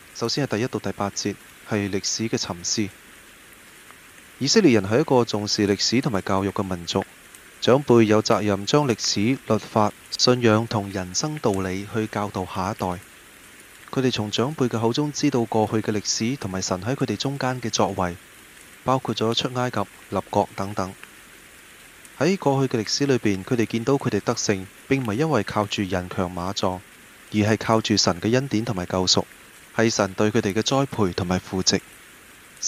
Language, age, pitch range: Chinese, 20-39, 95-120 Hz